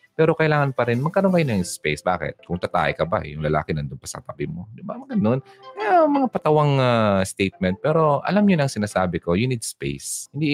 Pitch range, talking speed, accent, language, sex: 90-140 Hz, 210 wpm, native, Filipino, male